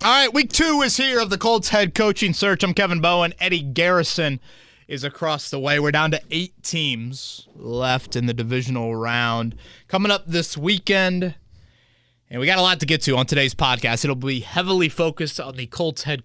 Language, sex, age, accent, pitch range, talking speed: English, male, 20-39, American, 120-170 Hz, 200 wpm